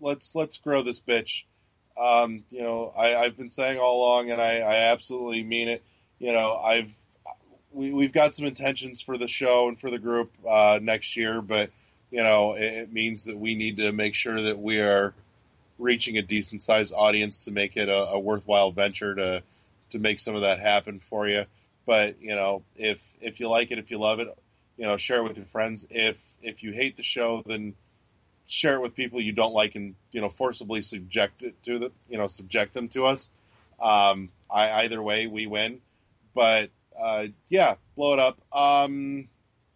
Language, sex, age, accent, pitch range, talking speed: English, male, 30-49, American, 105-125 Hz, 200 wpm